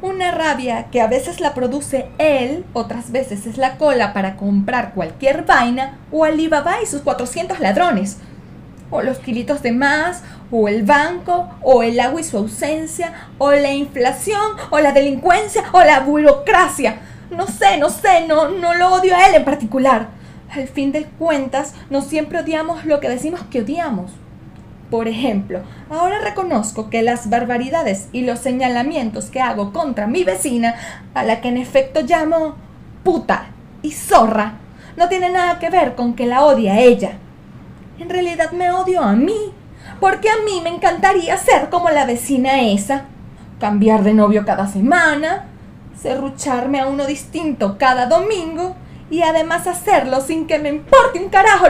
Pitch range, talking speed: 245-335 Hz, 165 wpm